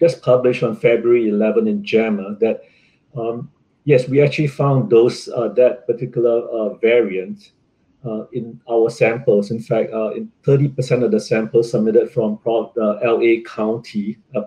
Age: 50-69